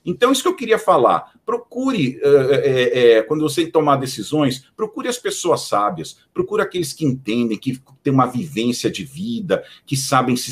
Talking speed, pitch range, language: 175 wpm, 115-165 Hz, Portuguese